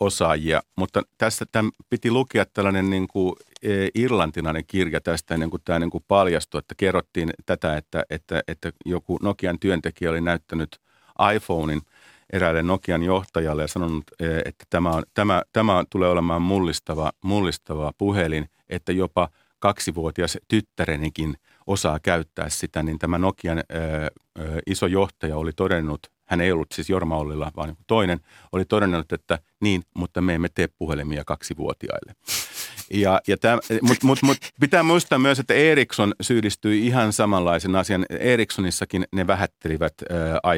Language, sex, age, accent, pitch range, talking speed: Finnish, male, 50-69, native, 80-100 Hz, 145 wpm